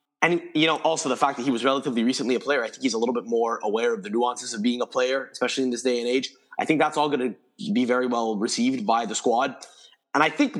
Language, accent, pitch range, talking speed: English, American, 110-165 Hz, 285 wpm